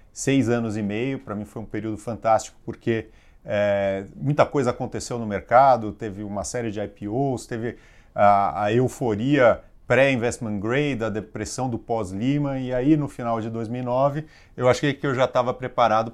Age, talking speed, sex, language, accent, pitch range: 30-49, 165 wpm, male, English, Brazilian, 105-120 Hz